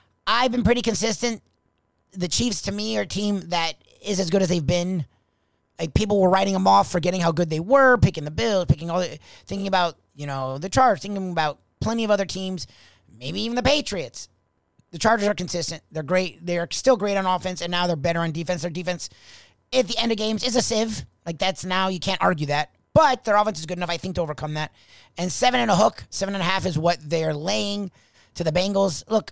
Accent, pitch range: American, 155-205 Hz